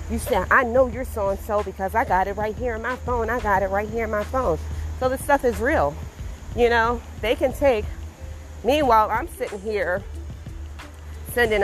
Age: 30-49